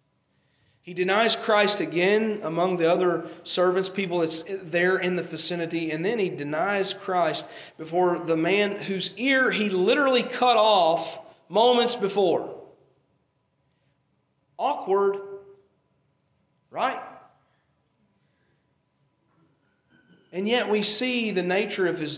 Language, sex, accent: English, male, American